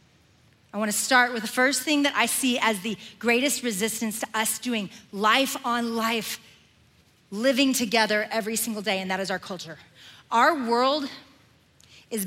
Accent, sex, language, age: American, female, English, 40-59